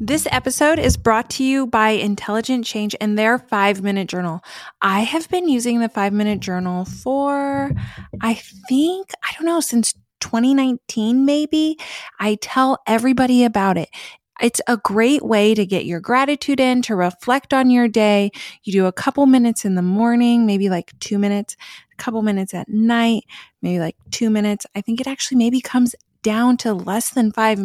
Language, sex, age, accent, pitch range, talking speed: English, female, 20-39, American, 200-255 Hz, 175 wpm